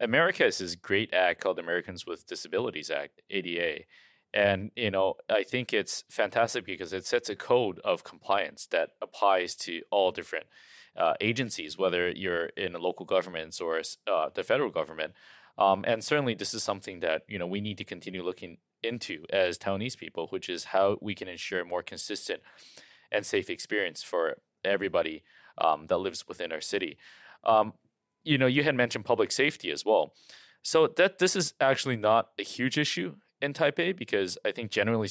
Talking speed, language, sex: 180 wpm, English, male